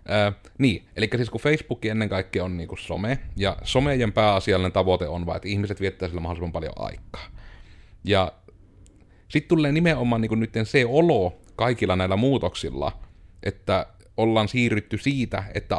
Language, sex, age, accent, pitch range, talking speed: Finnish, male, 30-49, native, 95-110 Hz, 150 wpm